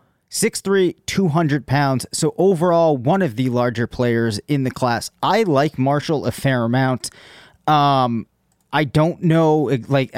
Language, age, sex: English, 30-49, male